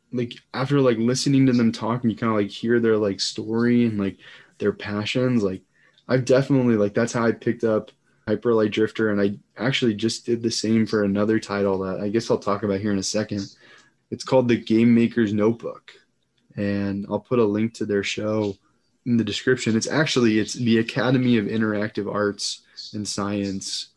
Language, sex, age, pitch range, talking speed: English, male, 20-39, 100-120 Hz, 195 wpm